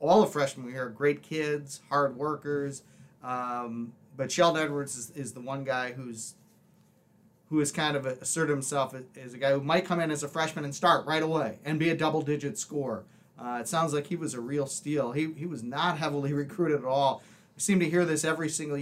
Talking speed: 220 wpm